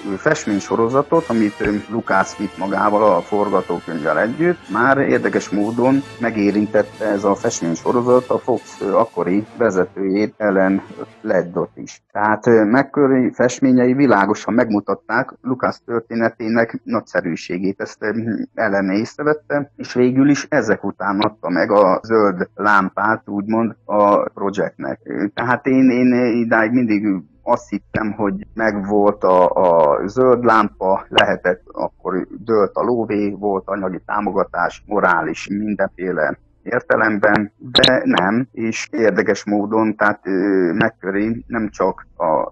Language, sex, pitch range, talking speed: Hungarian, male, 100-120 Hz, 115 wpm